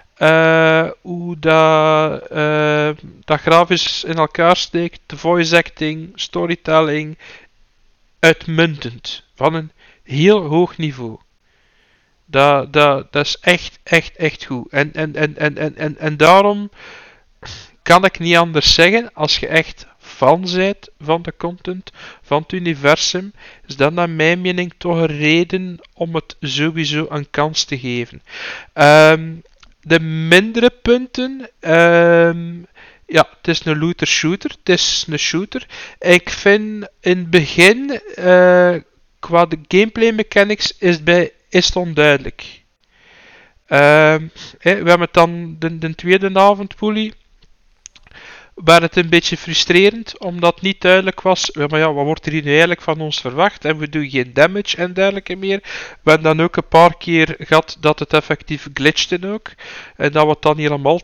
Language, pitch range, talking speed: Dutch, 155-180 Hz, 150 wpm